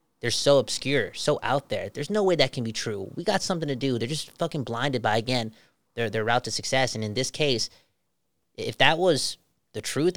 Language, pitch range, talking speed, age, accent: English, 135-210 Hz, 225 wpm, 30-49, American